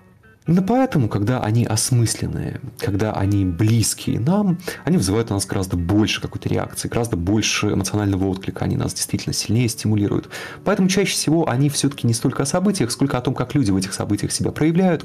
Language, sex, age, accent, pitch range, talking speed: Russian, male, 30-49, native, 110-155 Hz, 180 wpm